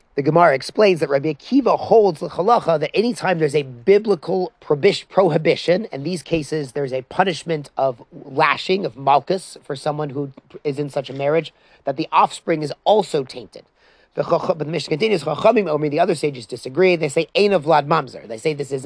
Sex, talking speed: male, 190 wpm